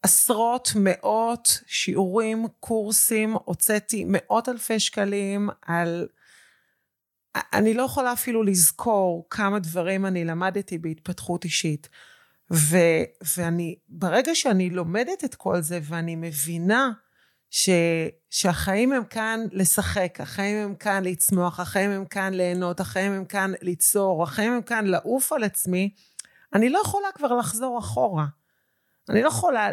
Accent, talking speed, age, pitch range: native, 125 wpm, 30-49, 175-230 Hz